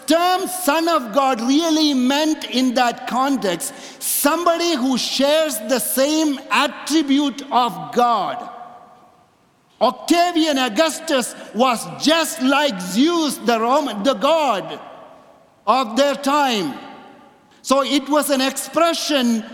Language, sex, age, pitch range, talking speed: English, male, 50-69, 230-295 Hz, 110 wpm